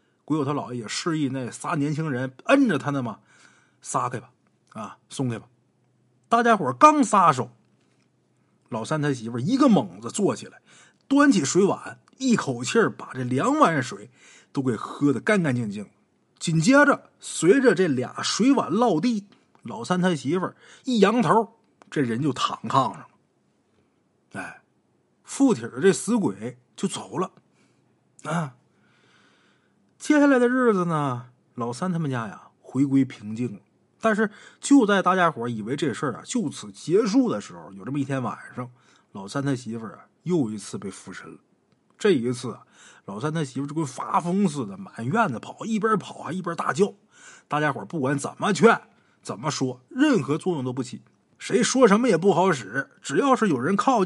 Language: Chinese